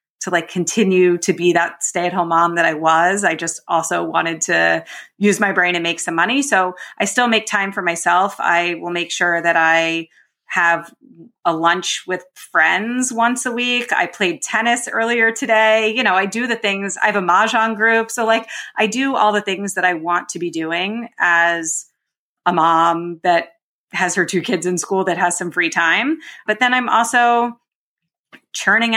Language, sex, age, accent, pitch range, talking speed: English, female, 30-49, American, 175-220 Hz, 195 wpm